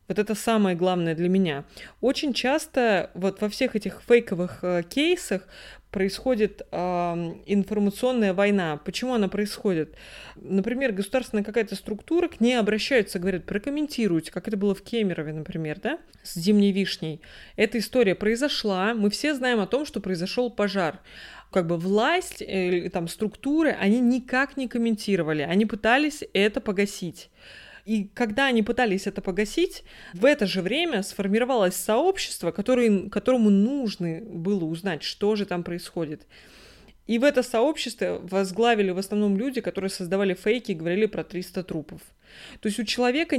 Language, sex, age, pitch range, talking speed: Russian, female, 20-39, 190-235 Hz, 145 wpm